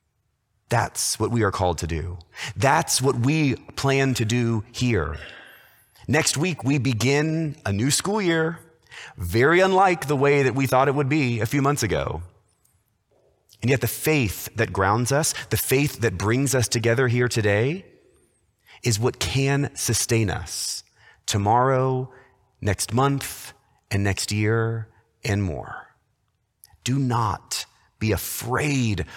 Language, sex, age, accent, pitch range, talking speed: English, male, 30-49, American, 100-130 Hz, 140 wpm